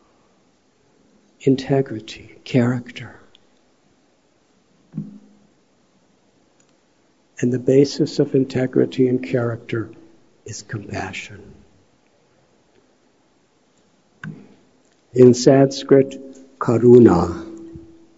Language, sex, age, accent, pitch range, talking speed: English, male, 60-79, American, 125-165 Hz, 45 wpm